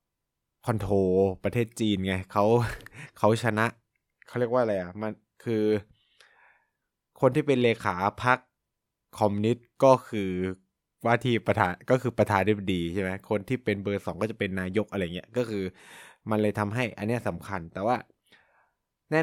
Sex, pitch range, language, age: male, 95-115 Hz, Thai, 20-39